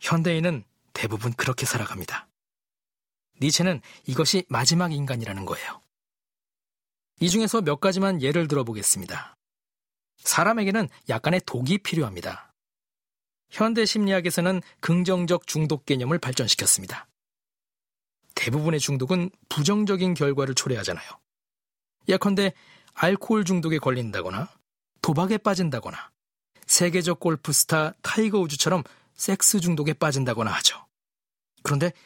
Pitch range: 130-185 Hz